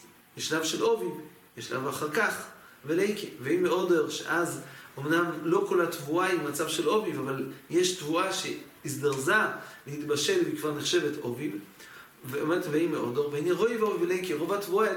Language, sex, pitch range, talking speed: English, male, 170-230 Hz, 120 wpm